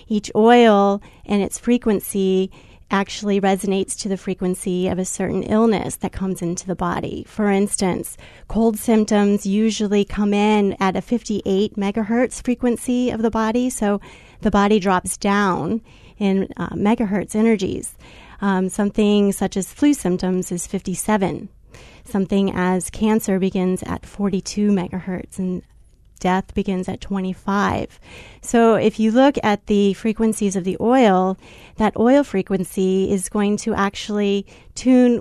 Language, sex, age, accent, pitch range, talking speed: English, female, 30-49, American, 190-220 Hz, 140 wpm